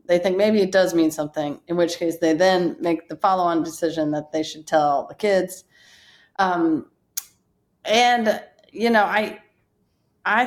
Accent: American